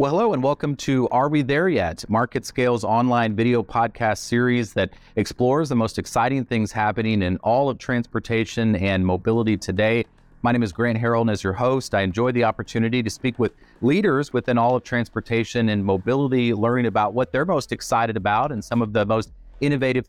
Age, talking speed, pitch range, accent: 30-49, 195 wpm, 105-125 Hz, American